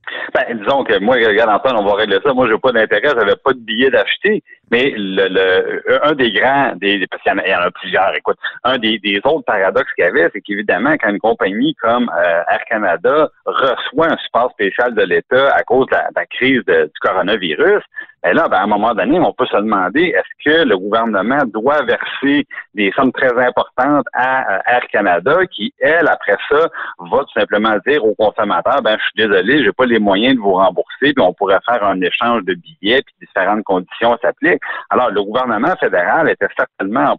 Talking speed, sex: 220 wpm, male